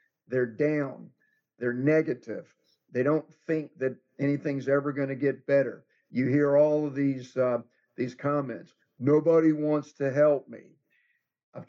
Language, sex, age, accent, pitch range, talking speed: English, male, 50-69, American, 130-150 Hz, 145 wpm